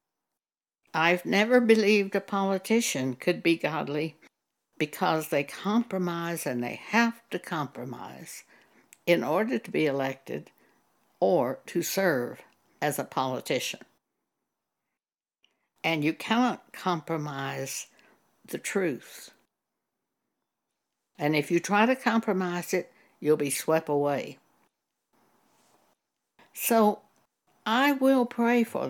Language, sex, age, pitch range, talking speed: English, female, 60-79, 160-220 Hz, 100 wpm